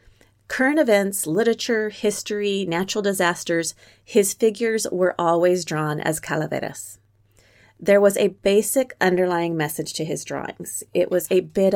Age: 30-49